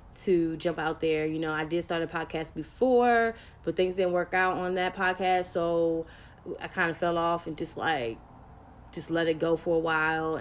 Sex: female